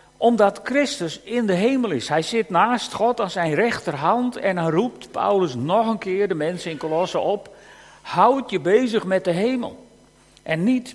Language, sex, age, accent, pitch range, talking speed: Dutch, male, 50-69, Dutch, 155-235 Hz, 180 wpm